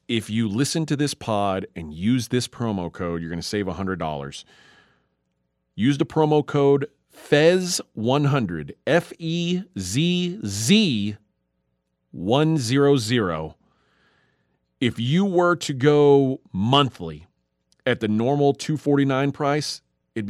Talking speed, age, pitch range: 110 wpm, 40-59, 100-145 Hz